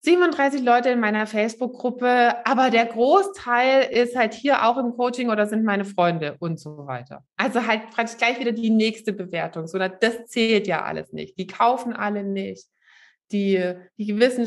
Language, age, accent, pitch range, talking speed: German, 20-39, German, 195-250 Hz, 170 wpm